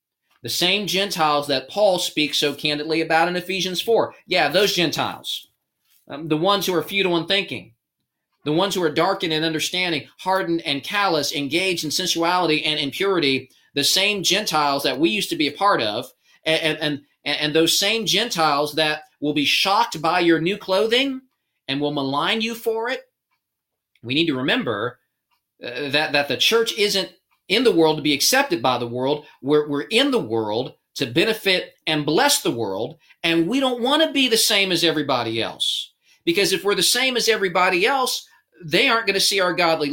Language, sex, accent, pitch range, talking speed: English, male, American, 155-210 Hz, 190 wpm